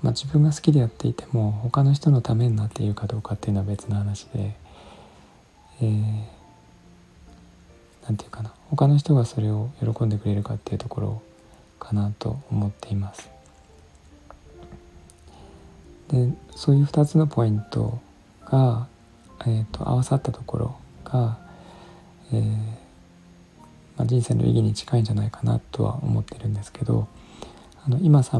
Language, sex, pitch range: Japanese, male, 100-125 Hz